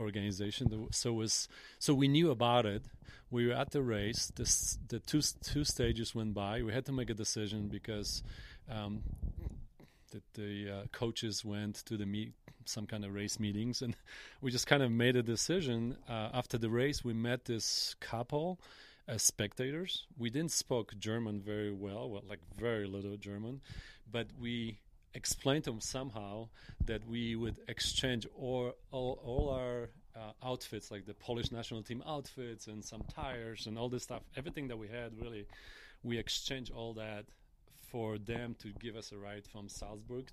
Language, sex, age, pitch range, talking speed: French, male, 30-49, 105-125 Hz, 175 wpm